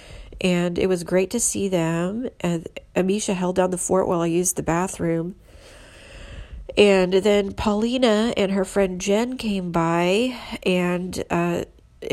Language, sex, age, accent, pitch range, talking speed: English, female, 40-59, American, 180-240 Hz, 145 wpm